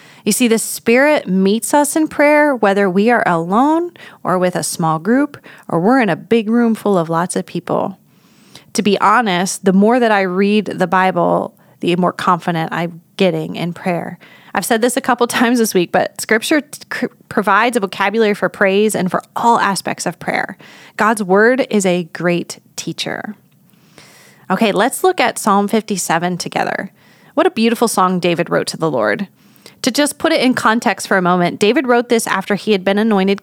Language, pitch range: English, 180-230 Hz